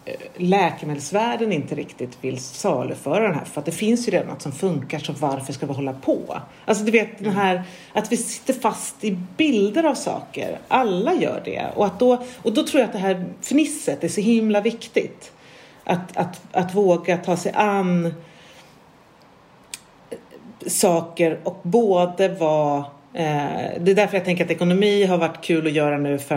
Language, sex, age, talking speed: Swedish, female, 40-59, 180 wpm